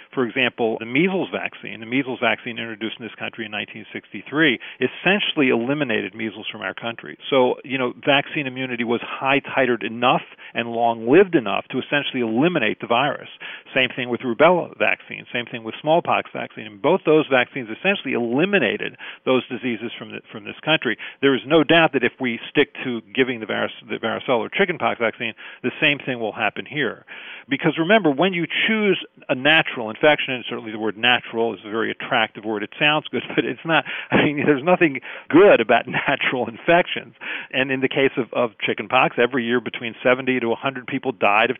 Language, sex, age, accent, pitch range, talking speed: English, male, 40-59, American, 115-145 Hz, 190 wpm